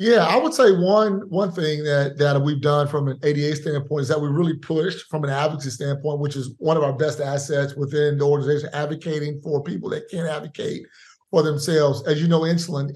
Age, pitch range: 30-49, 145-170 Hz